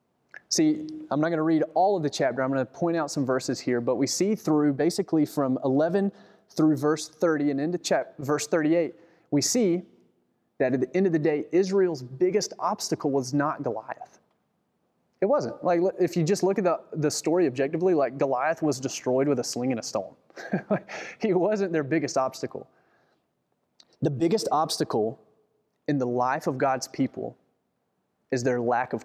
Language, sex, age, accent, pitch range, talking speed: English, male, 20-39, American, 130-160 Hz, 180 wpm